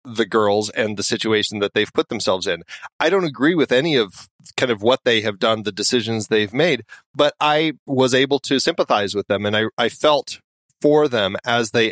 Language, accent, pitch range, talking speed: English, American, 110-135 Hz, 210 wpm